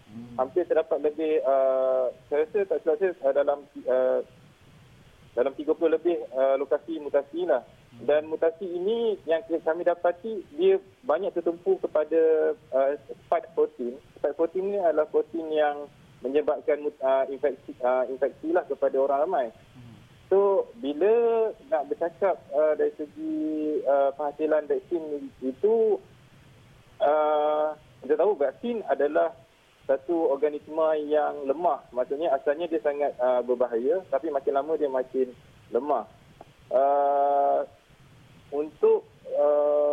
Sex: male